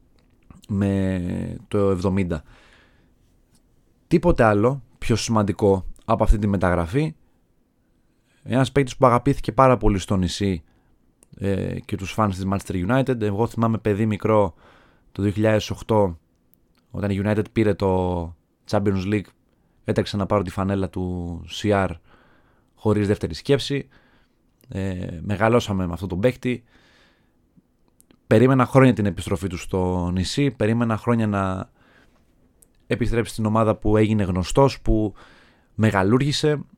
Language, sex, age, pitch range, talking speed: Greek, male, 20-39, 95-120 Hz, 120 wpm